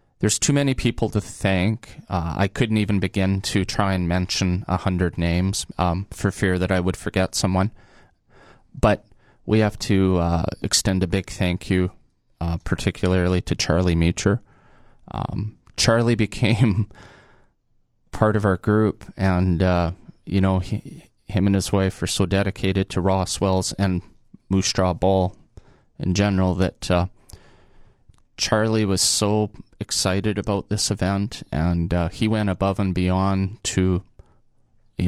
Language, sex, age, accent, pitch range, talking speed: English, male, 20-39, American, 90-110 Hz, 145 wpm